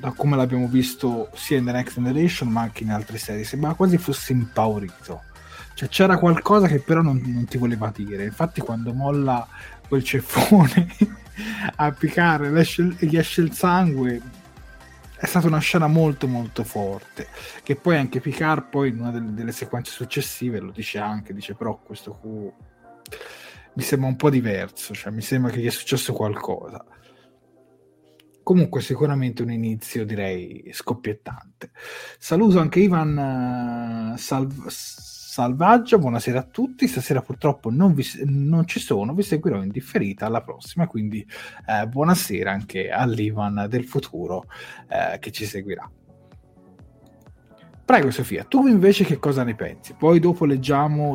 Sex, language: male, Italian